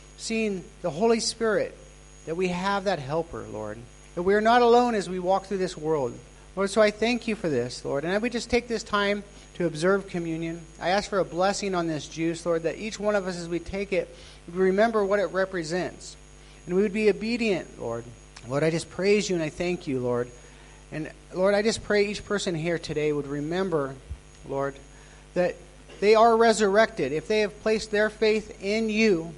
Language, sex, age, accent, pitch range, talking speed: English, male, 40-59, American, 160-205 Hz, 210 wpm